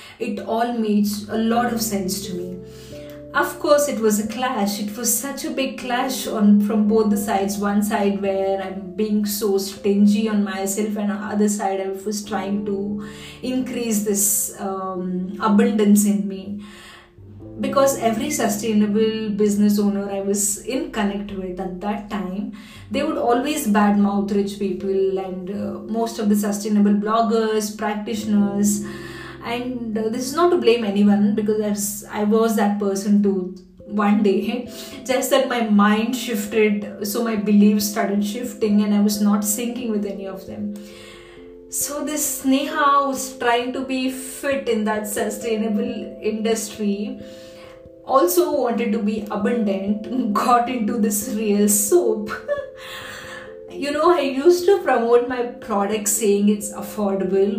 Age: 20-39